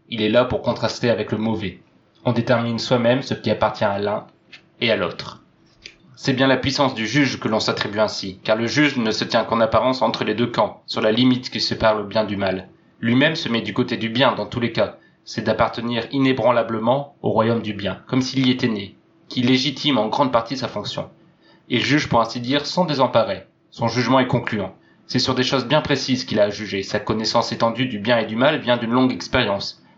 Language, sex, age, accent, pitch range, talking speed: French, male, 20-39, French, 110-130 Hz, 225 wpm